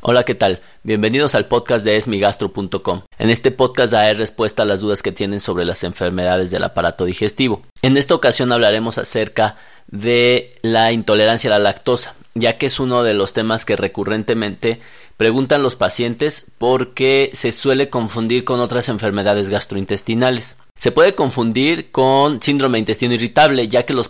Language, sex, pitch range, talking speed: Spanish, male, 105-125 Hz, 165 wpm